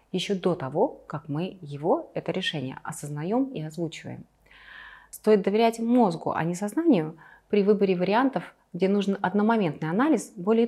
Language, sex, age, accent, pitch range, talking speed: Russian, female, 30-49, native, 165-225 Hz, 140 wpm